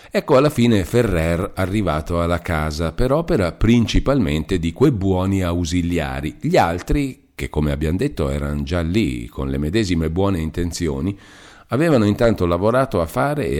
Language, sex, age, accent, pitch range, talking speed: Italian, male, 50-69, native, 75-100 Hz, 150 wpm